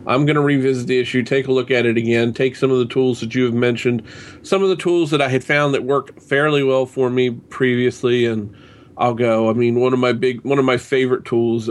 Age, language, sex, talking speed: 40-59, English, male, 255 wpm